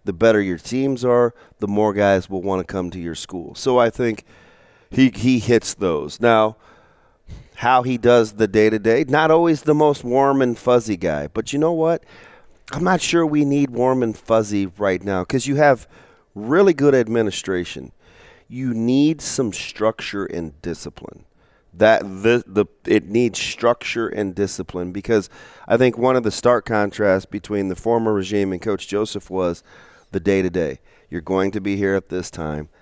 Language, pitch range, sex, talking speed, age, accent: English, 95-125 Hz, male, 175 wpm, 40-59, American